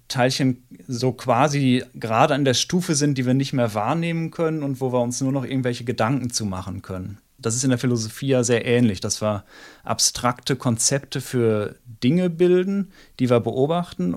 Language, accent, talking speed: German, German, 180 wpm